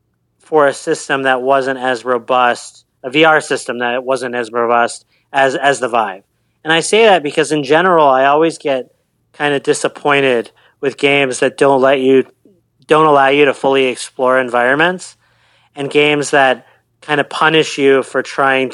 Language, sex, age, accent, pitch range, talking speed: English, male, 40-59, American, 125-140 Hz, 175 wpm